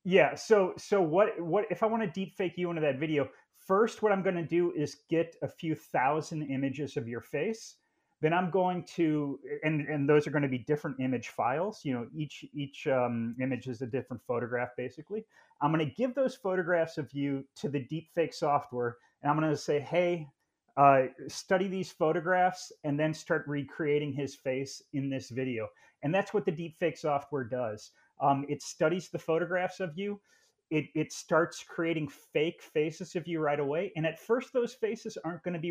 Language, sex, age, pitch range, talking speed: English, male, 30-49, 140-180 Hz, 200 wpm